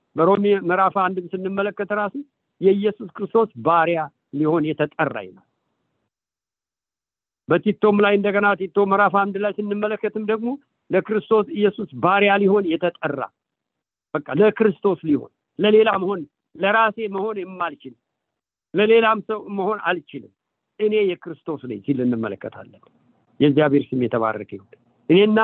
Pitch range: 150-210 Hz